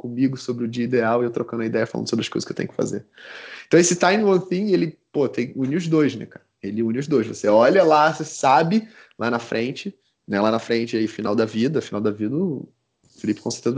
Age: 20-39